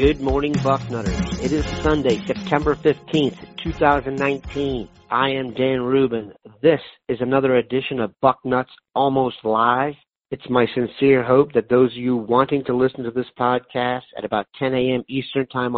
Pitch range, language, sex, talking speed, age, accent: 120-135 Hz, English, male, 155 wpm, 50-69, American